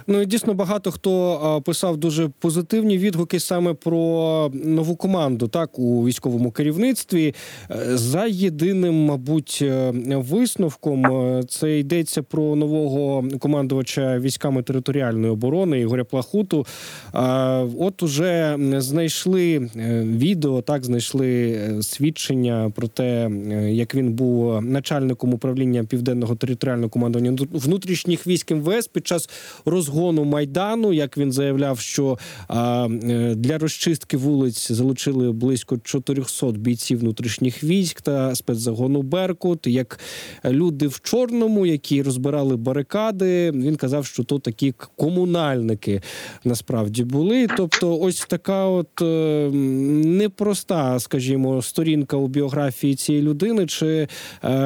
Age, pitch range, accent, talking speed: 20-39, 125-170 Hz, native, 110 wpm